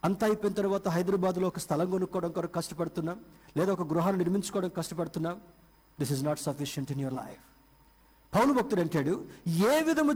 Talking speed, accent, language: 155 wpm, native, Telugu